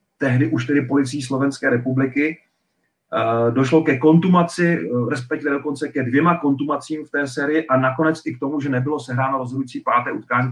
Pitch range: 130-160 Hz